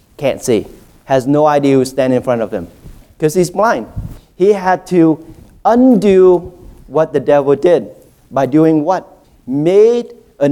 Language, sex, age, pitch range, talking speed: English, male, 40-59, 140-200 Hz, 155 wpm